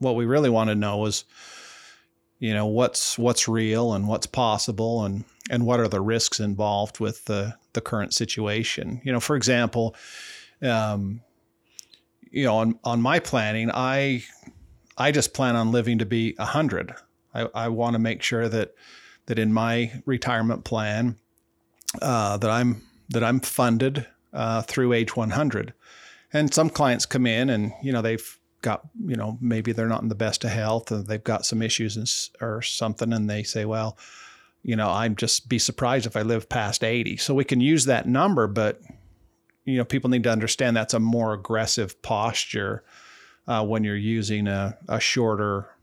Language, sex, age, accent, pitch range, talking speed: English, male, 40-59, American, 110-120 Hz, 180 wpm